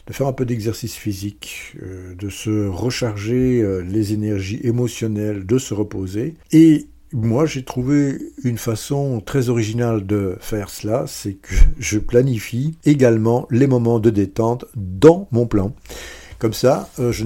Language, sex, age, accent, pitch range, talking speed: French, male, 60-79, French, 100-130 Hz, 145 wpm